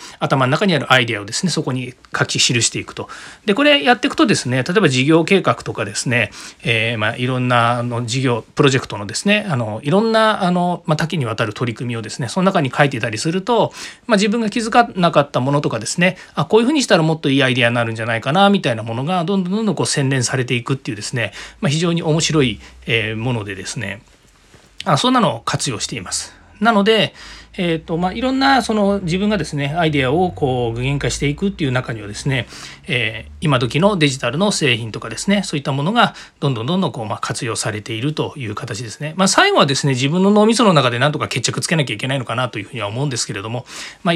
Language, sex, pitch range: Japanese, male, 125-190 Hz